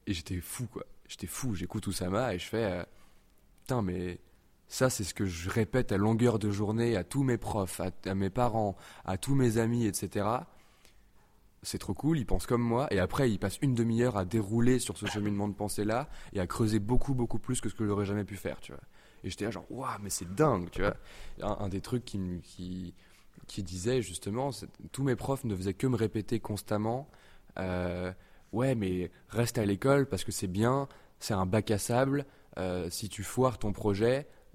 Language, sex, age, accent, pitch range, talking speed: French, male, 20-39, French, 95-115 Hz, 220 wpm